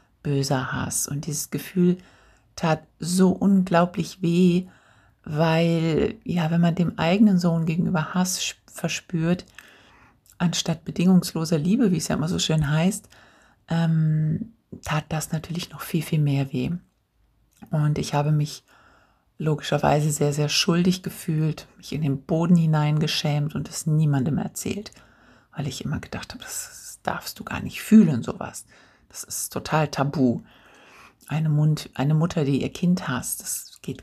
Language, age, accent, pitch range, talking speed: German, 60-79, German, 150-180 Hz, 145 wpm